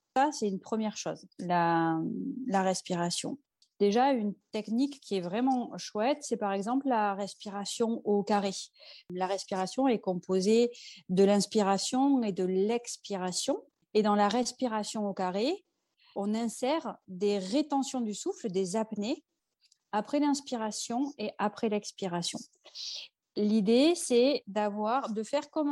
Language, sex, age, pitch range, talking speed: French, female, 30-49, 195-255 Hz, 130 wpm